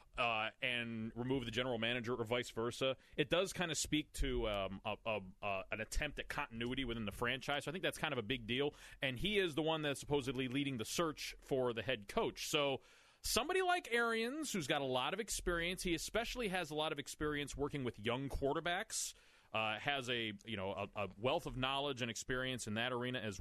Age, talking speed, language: 30-49, 205 wpm, English